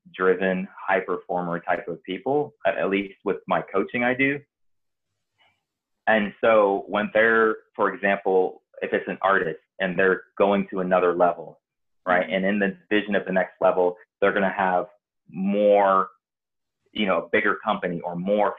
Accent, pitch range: American, 95-110 Hz